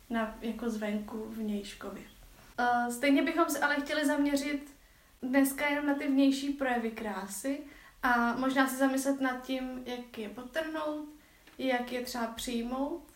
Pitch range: 235-270 Hz